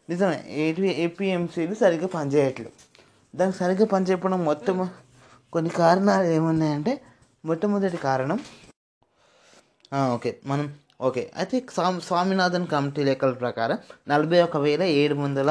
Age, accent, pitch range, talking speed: 20-39, native, 150-190 Hz, 110 wpm